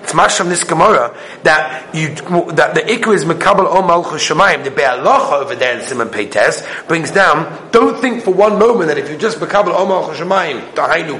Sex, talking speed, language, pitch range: male, 200 wpm, English, 170-245 Hz